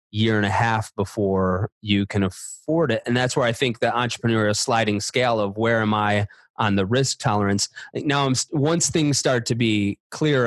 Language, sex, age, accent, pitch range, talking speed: English, male, 20-39, American, 110-135 Hz, 200 wpm